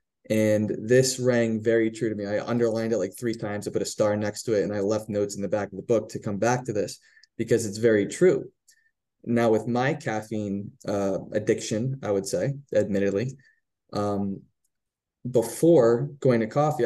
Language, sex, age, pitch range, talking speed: English, male, 20-39, 105-120 Hz, 190 wpm